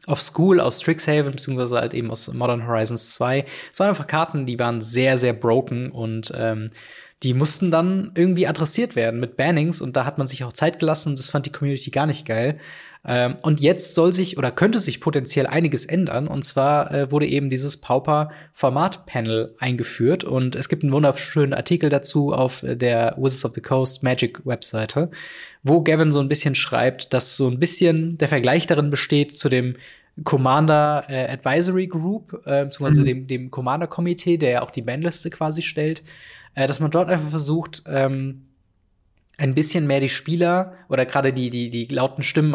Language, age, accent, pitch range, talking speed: German, 20-39, German, 130-160 Hz, 190 wpm